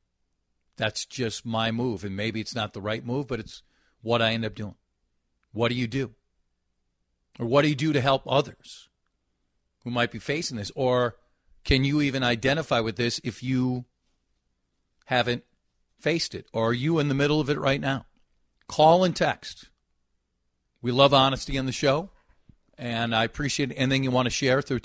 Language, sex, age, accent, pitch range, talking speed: English, male, 40-59, American, 100-140 Hz, 180 wpm